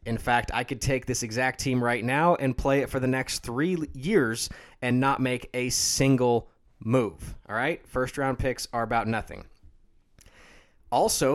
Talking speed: 170 wpm